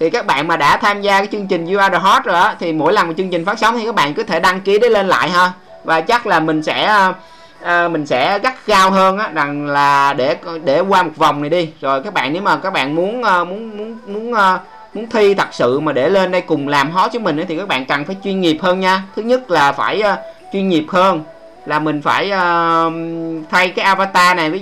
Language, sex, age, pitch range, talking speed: Vietnamese, male, 20-39, 155-190 Hz, 260 wpm